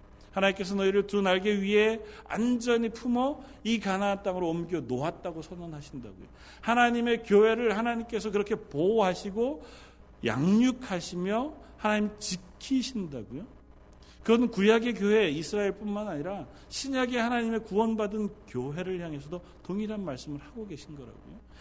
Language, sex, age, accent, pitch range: Korean, male, 40-59, native, 180-230 Hz